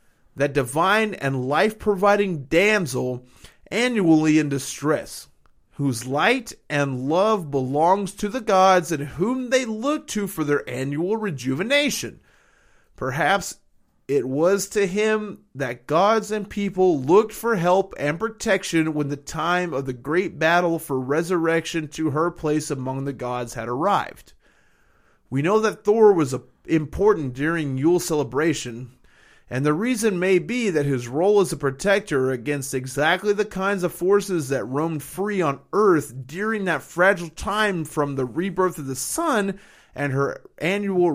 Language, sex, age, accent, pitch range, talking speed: English, male, 30-49, American, 140-200 Hz, 145 wpm